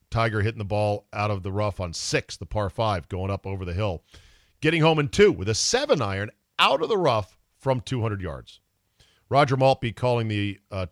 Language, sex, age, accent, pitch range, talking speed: English, male, 40-59, American, 95-125 Hz, 205 wpm